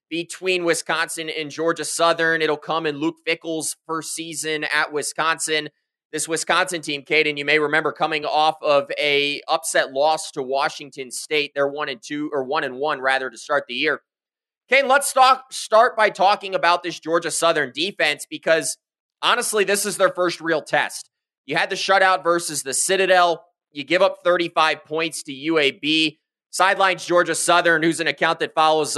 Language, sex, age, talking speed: English, male, 20-39, 175 wpm